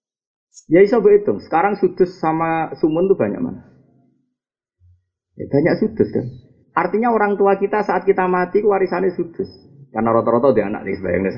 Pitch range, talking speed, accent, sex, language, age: 125-200 Hz, 160 wpm, native, male, Indonesian, 40-59